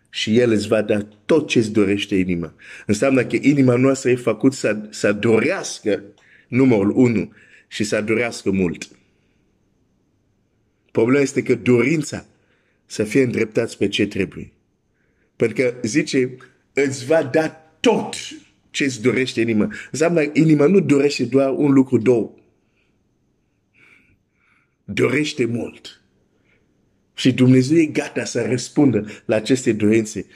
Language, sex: Romanian, male